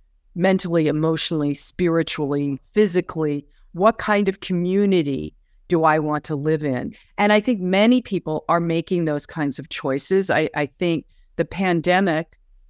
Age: 40-59